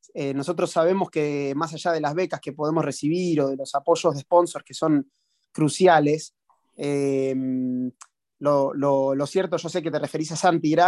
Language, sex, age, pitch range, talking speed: Spanish, male, 20-39, 140-170 Hz, 175 wpm